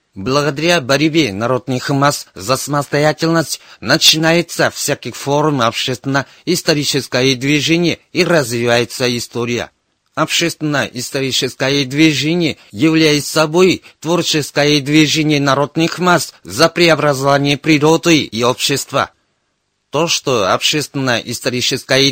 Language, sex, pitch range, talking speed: Russian, male, 130-160 Hz, 80 wpm